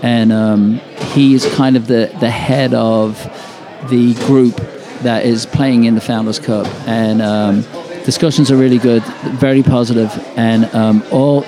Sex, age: male, 50-69